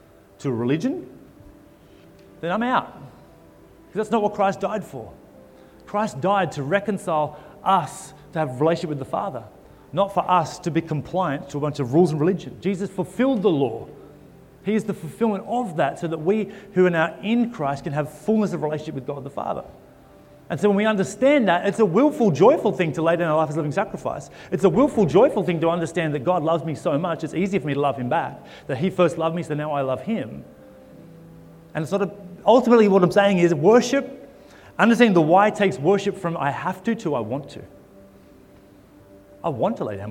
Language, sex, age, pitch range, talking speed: English, male, 30-49, 140-200 Hz, 210 wpm